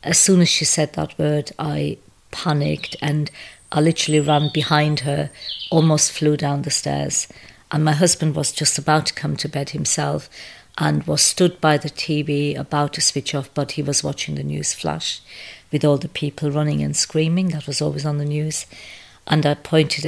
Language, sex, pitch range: English, female, 140-155 Hz